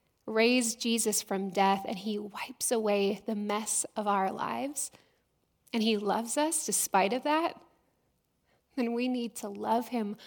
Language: English